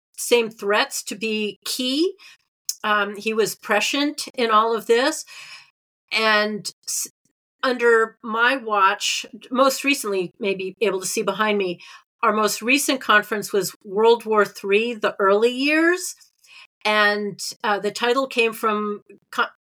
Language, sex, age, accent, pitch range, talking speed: English, female, 40-59, American, 195-235 Hz, 135 wpm